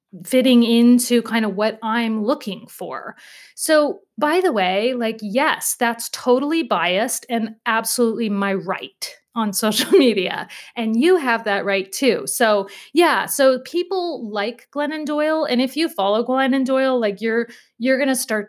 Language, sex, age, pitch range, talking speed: English, female, 30-49, 200-255 Hz, 160 wpm